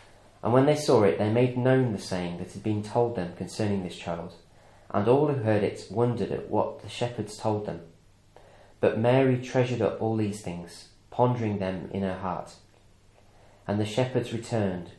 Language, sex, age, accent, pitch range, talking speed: English, male, 30-49, British, 100-120 Hz, 185 wpm